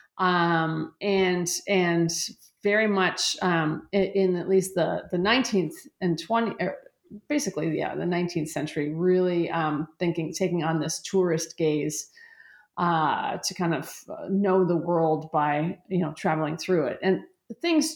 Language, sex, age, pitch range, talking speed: English, female, 30-49, 175-260 Hz, 145 wpm